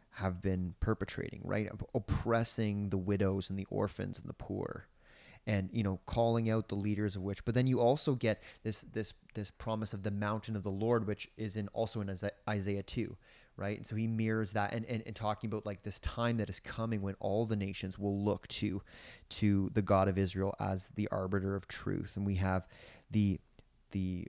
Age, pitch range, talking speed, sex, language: 30-49, 100-115 Hz, 205 wpm, male, English